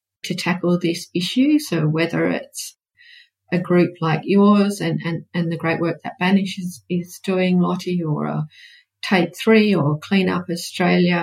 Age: 40-59